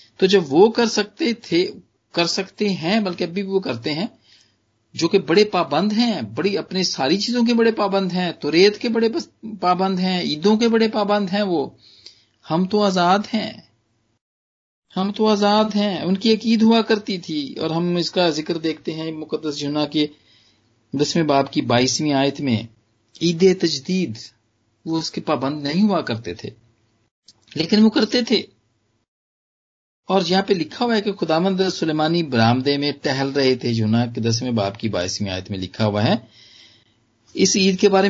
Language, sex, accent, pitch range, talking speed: Hindi, male, native, 115-195 Hz, 175 wpm